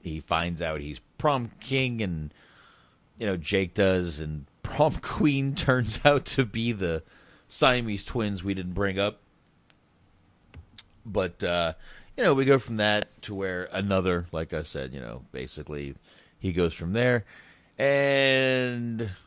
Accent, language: American, English